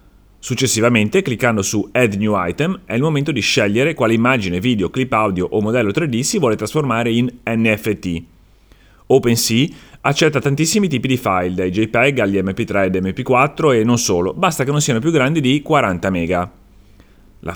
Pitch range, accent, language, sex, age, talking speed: 95-130 Hz, native, Italian, male, 30-49, 165 wpm